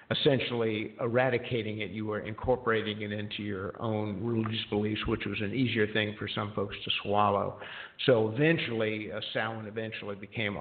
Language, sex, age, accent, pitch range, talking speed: English, male, 50-69, American, 105-120 Hz, 155 wpm